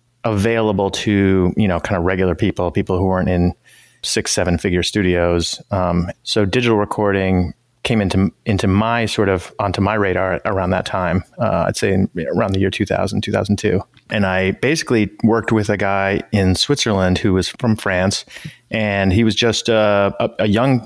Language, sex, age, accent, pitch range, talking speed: English, male, 30-49, American, 90-110 Hz, 175 wpm